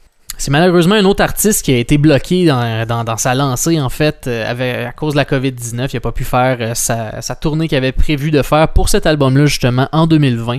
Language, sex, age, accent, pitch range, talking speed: French, male, 20-39, Canadian, 125-155 Hz, 240 wpm